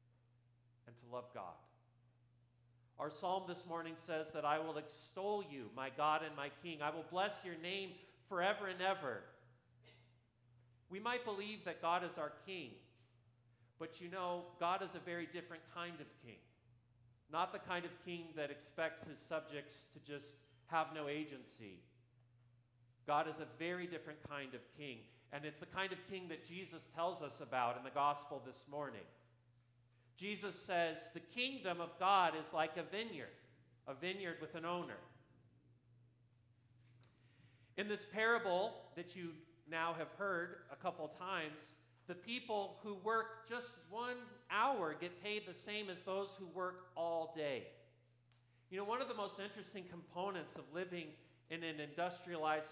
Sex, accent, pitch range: male, American, 125-180 Hz